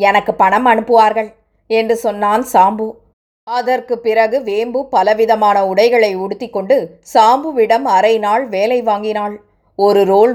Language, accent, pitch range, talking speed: Tamil, native, 210-245 Hz, 105 wpm